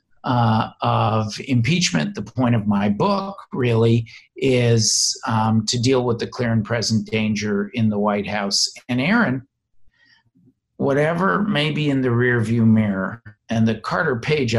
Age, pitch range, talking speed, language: 50-69, 110-175 Hz, 150 wpm, English